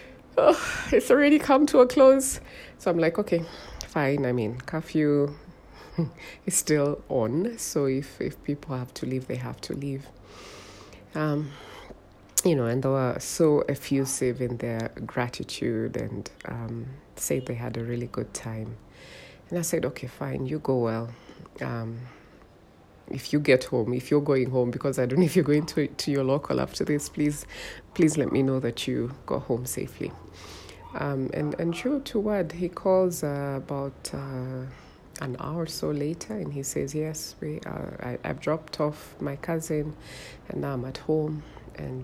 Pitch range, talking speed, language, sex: 125-155 Hz, 175 wpm, English, female